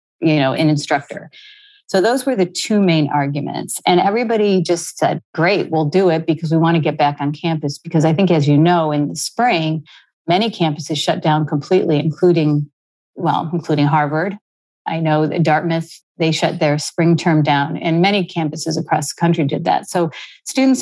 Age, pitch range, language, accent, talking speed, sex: 40-59, 155-185 Hz, English, American, 185 wpm, female